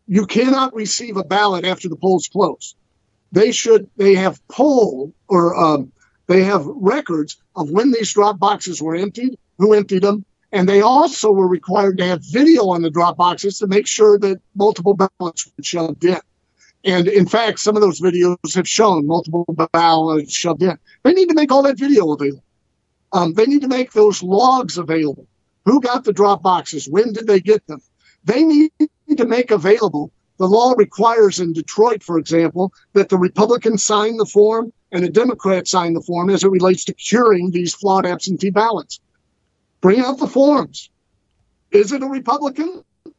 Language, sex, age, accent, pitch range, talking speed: English, male, 50-69, American, 175-225 Hz, 180 wpm